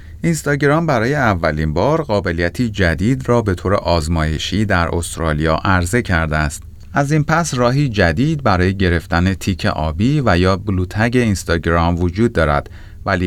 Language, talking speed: Persian, 140 wpm